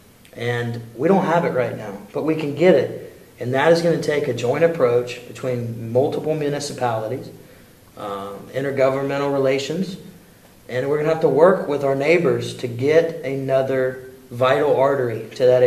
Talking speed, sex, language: 170 wpm, male, English